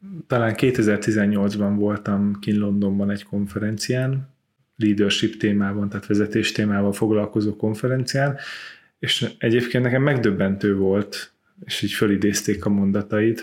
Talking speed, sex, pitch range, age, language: 105 wpm, male, 100-115 Hz, 30-49, Hungarian